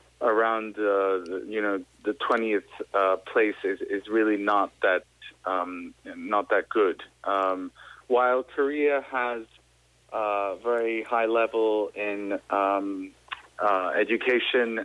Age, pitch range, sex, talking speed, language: 30-49, 100-120 Hz, male, 115 wpm, English